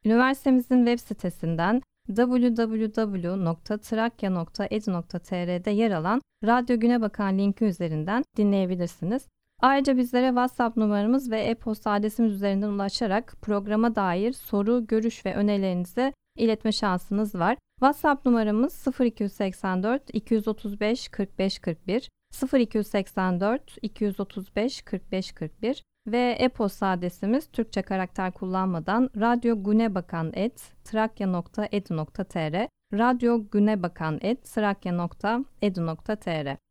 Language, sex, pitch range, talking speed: Turkish, female, 195-235 Hz, 70 wpm